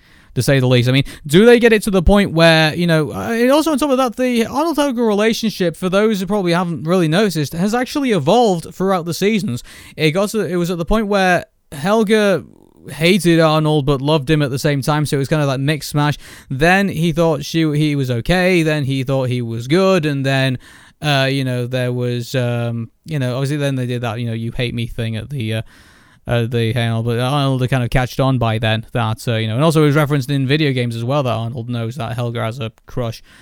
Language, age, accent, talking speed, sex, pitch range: English, 20-39, British, 240 wpm, male, 125-165 Hz